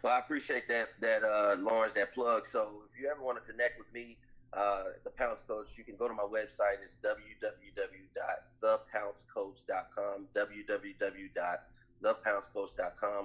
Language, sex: English, male